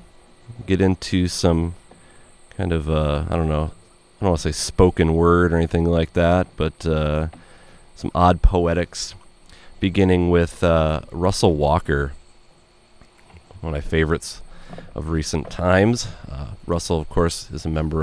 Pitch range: 80-95 Hz